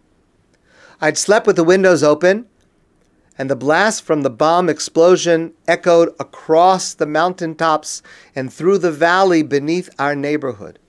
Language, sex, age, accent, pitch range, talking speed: English, male, 50-69, American, 140-175 Hz, 130 wpm